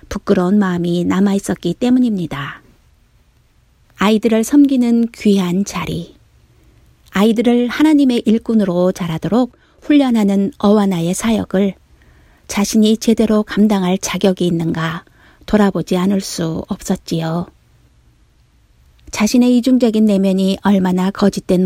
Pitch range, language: 185-235 Hz, Korean